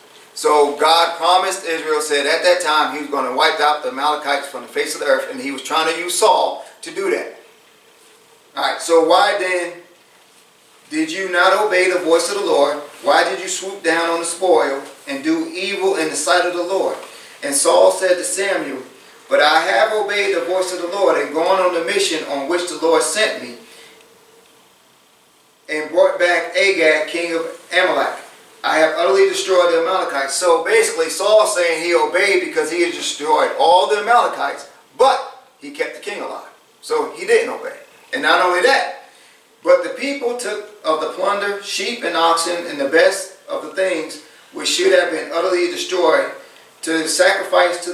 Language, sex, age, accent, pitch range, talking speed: English, male, 40-59, American, 165-265 Hz, 190 wpm